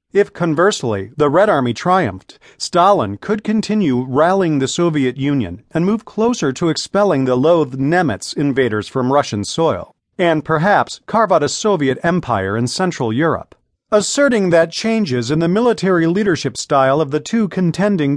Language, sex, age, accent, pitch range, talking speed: English, male, 40-59, American, 130-190 Hz, 155 wpm